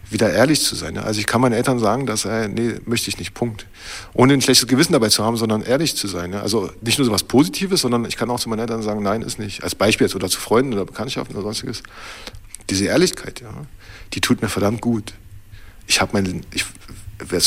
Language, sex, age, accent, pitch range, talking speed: German, male, 50-69, German, 100-130 Hz, 225 wpm